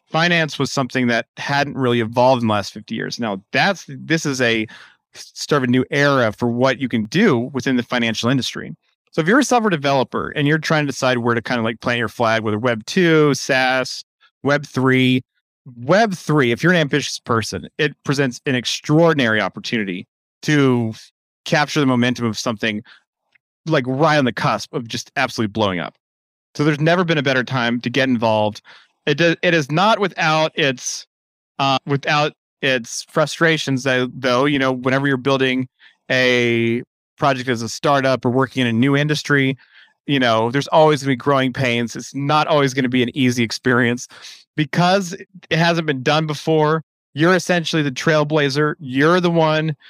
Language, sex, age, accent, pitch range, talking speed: English, male, 30-49, American, 120-150 Hz, 185 wpm